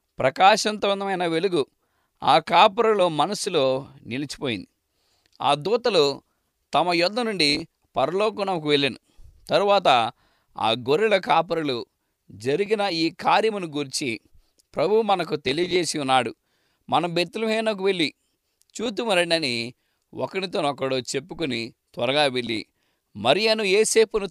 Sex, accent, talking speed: male, Indian, 90 wpm